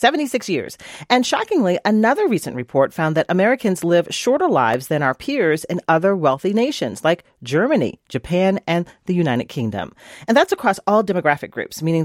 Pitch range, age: 145-235 Hz, 40-59